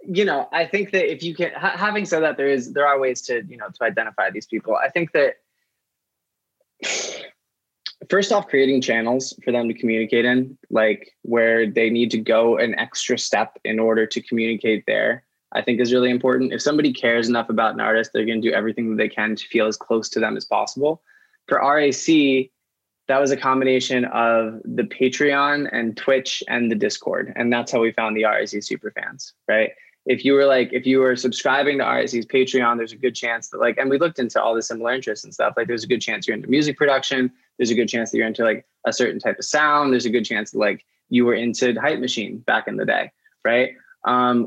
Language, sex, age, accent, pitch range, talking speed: English, male, 20-39, American, 115-140 Hz, 230 wpm